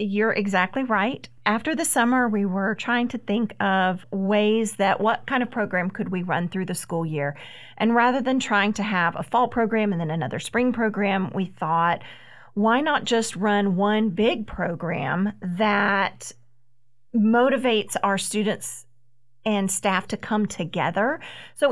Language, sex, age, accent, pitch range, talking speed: English, female, 40-59, American, 180-230 Hz, 160 wpm